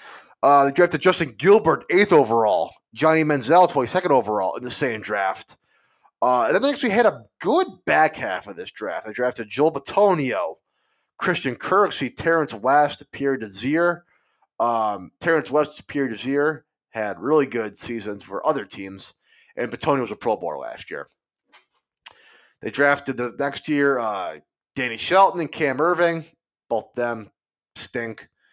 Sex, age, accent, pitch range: male, 20-39, American, 120-165 Hz